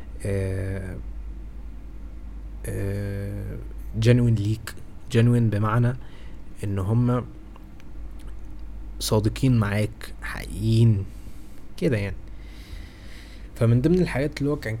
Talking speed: 75 wpm